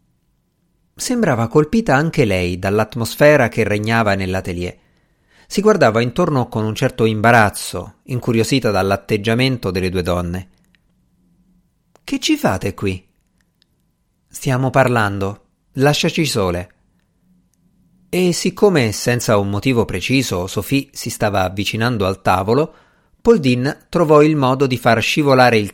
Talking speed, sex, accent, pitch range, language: 110 wpm, male, native, 100-150 Hz, Italian